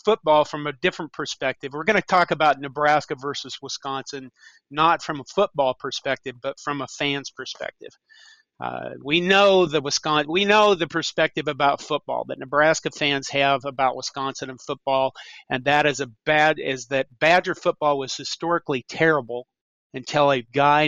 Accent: American